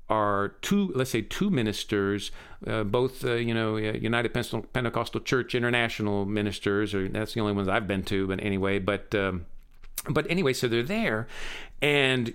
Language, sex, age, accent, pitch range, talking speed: English, male, 50-69, American, 100-125 Hz, 170 wpm